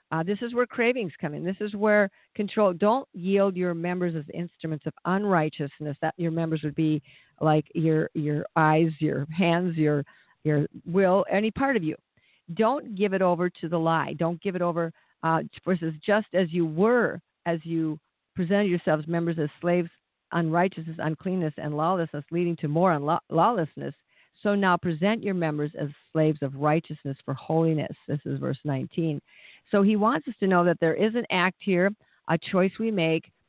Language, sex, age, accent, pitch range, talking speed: English, female, 50-69, American, 155-195 Hz, 180 wpm